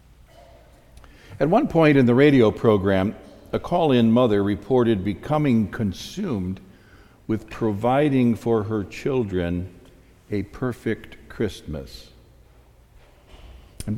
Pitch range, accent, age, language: 95-120 Hz, American, 60-79, English